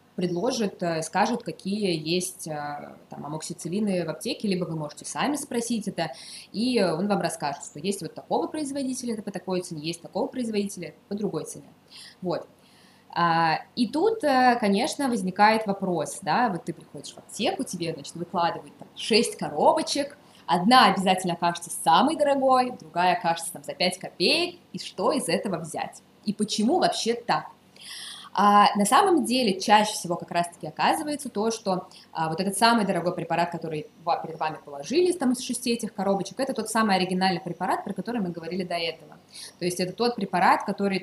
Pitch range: 170-235 Hz